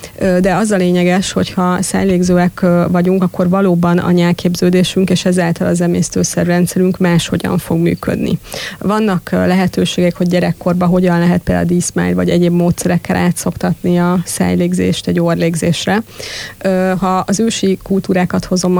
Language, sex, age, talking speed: Hungarian, female, 30-49, 125 wpm